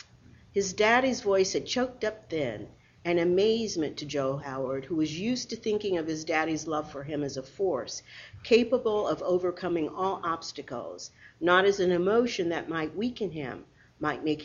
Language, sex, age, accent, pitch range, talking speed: English, female, 50-69, American, 155-200 Hz, 170 wpm